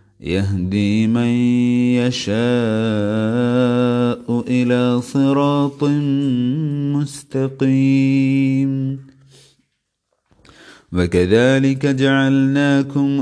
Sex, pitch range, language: male, 110-135 Hz, Malayalam